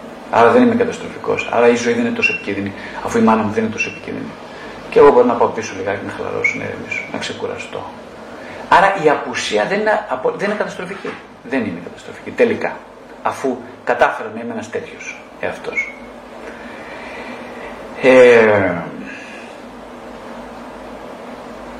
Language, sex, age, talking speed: Greek, male, 40-59, 140 wpm